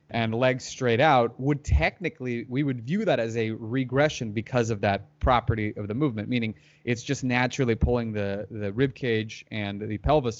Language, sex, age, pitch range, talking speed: English, male, 30-49, 110-130 Hz, 180 wpm